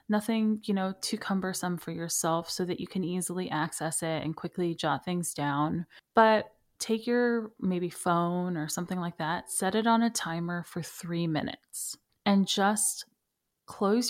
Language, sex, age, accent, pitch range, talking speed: English, female, 30-49, American, 170-230 Hz, 165 wpm